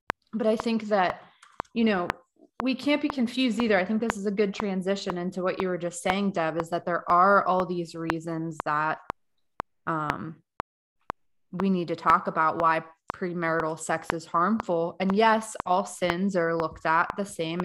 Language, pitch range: English, 170-195 Hz